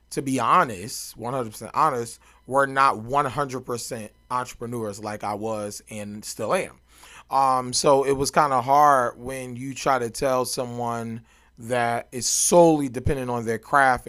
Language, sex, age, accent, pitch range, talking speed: English, male, 30-49, American, 115-140 Hz, 160 wpm